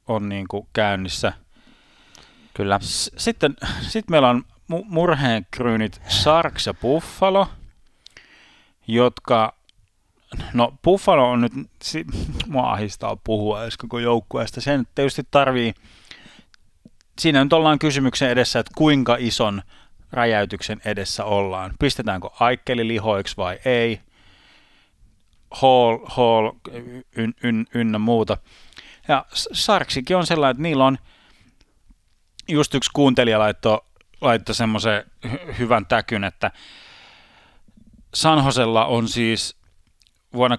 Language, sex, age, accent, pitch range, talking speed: Finnish, male, 30-49, native, 100-130 Hz, 100 wpm